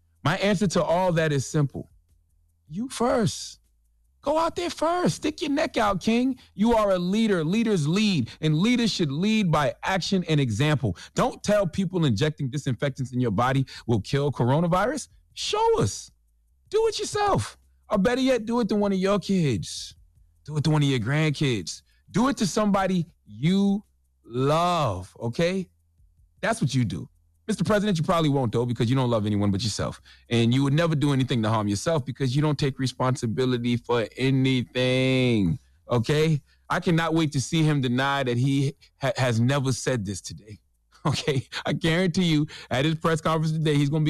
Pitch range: 115-180 Hz